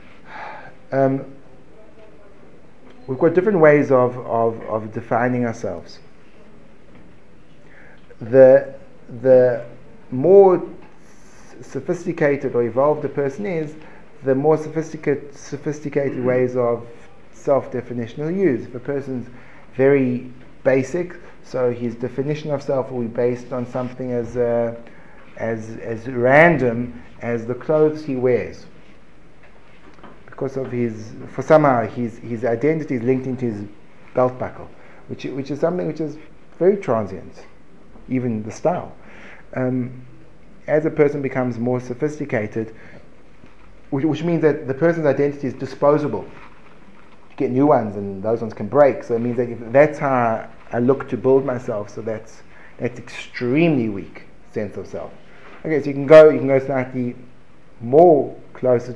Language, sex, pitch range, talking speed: English, male, 120-145 Hz, 135 wpm